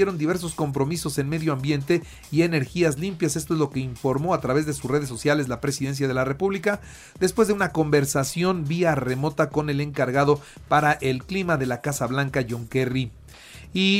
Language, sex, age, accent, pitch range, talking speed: Spanish, male, 40-59, Mexican, 135-175 Hz, 185 wpm